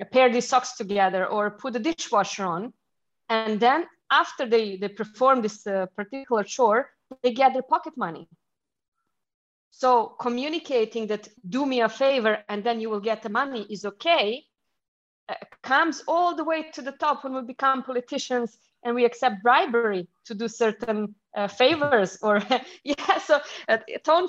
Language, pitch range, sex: English, 195-255 Hz, female